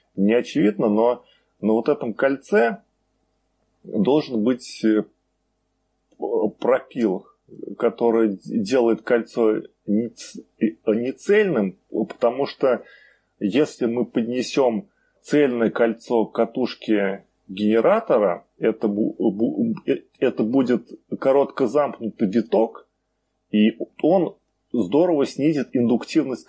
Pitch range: 105-130 Hz